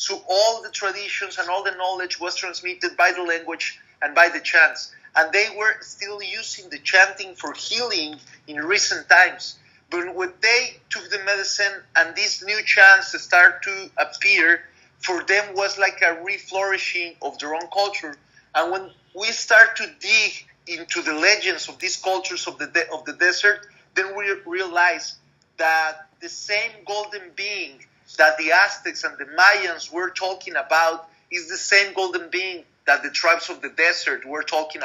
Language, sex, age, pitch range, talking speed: English, male, 30-49, 160-205 Hz, 170 wpm